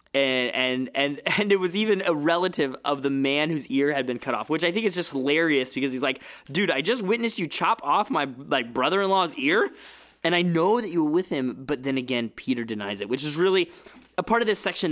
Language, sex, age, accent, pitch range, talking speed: English, male, 20-39, American, 125-170 Hz, 240 wpm